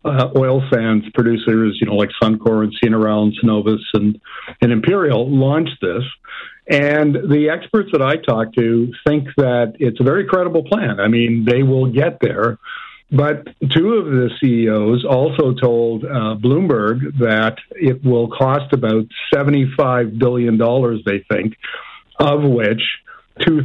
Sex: male